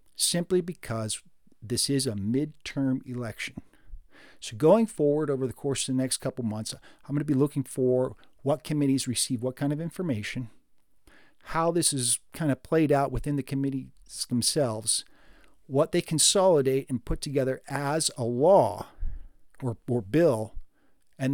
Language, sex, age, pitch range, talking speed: English, male, 50-69, 125-165 Hz, 155 wpm